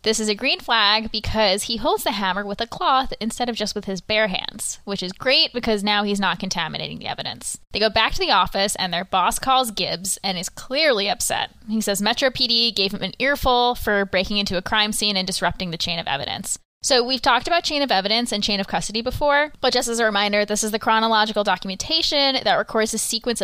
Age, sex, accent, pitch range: 10-29, female, American, 195-240 Hz